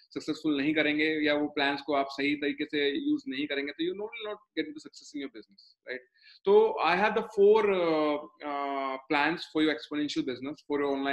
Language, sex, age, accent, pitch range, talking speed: Hindi, male, 20-39, native, 155-220 Hz, 175 wpm